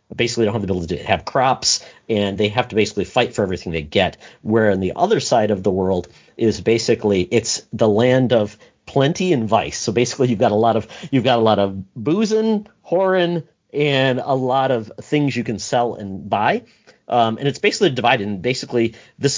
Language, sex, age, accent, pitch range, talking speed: English, male, 40-59, American, 105-125 Hz, 210 wpm